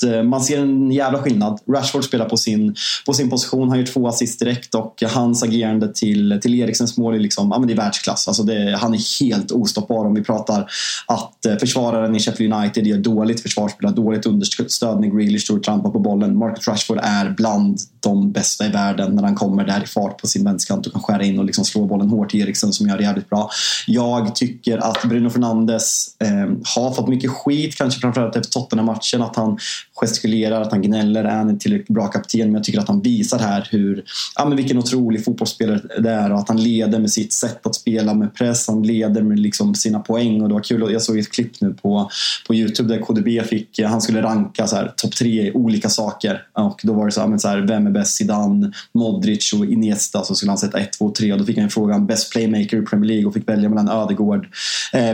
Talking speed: 225 wpm